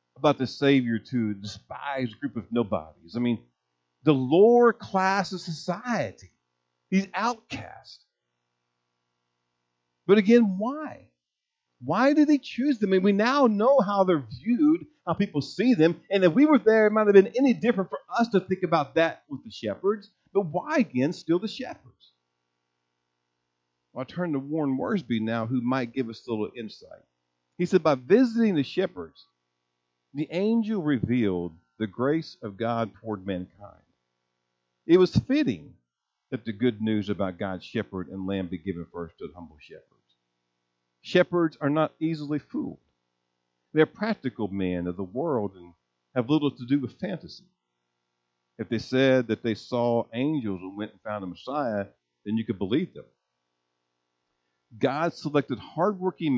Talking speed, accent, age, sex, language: 160 wpm, American, 50-69, male, English